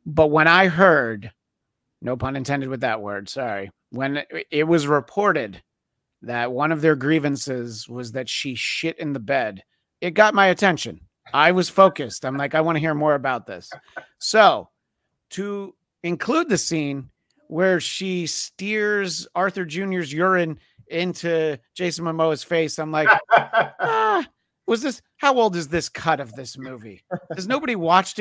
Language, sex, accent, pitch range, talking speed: English, male, American, 125-175 Hz, 155 wpm